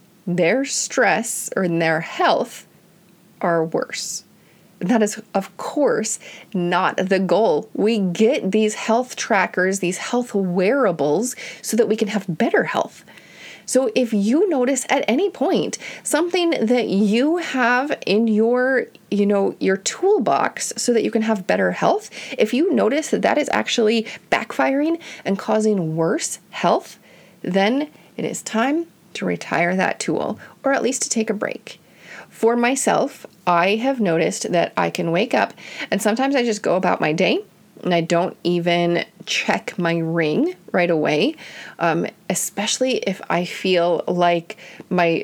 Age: 30-49